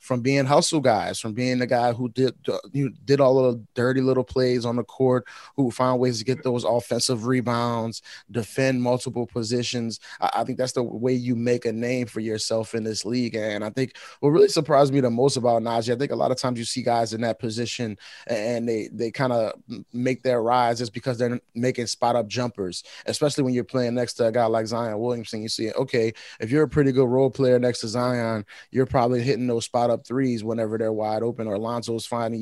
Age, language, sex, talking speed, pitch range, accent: 20-39, English, male, 225 wpm, 115-130 Hz, American